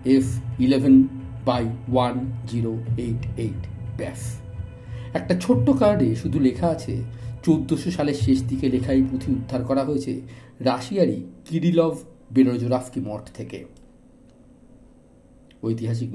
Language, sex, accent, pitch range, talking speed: Bengali, male, native, 110-145 Hz, 95 wpm